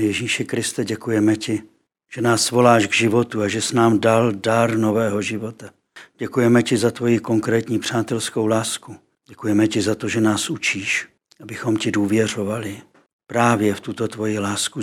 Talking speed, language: 160 wpm, Czech